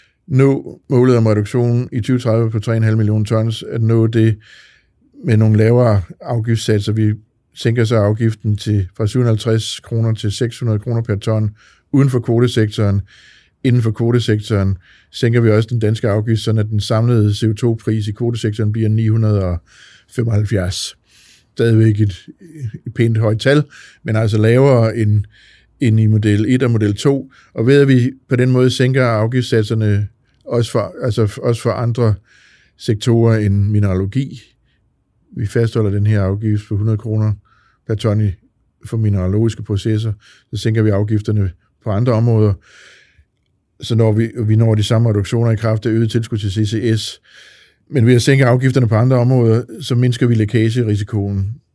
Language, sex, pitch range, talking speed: Danish, male, 105-120 Hz, 155 wpm